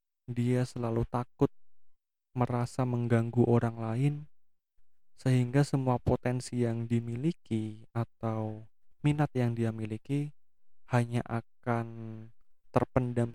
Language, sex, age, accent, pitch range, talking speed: Indonesian, male, 20-39, native, 110-130 Hz, 90 wpm